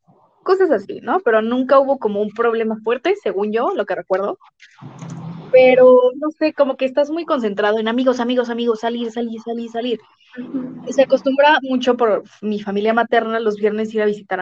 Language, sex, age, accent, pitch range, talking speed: Spanish, female, 20-39, Mexican, 210-260 Hz, 180 wpm